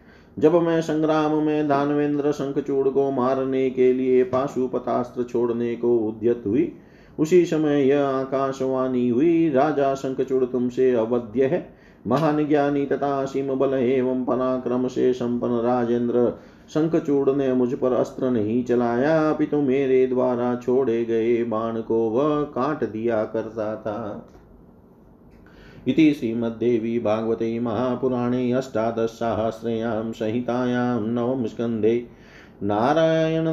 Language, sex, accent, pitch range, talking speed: Hindi, male, native, 115-135 Hz, 105 wpm